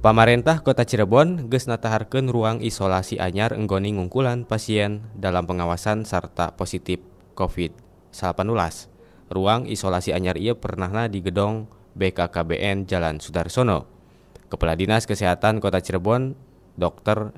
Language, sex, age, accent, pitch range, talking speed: Indonesian, male, 20-39, native, 90-115 Hz, 110 wpm